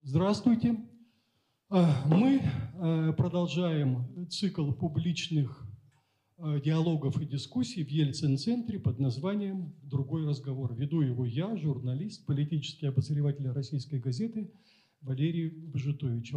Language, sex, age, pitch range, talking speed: Russian, male, 40-59, 130-170 Hz, 90 wpm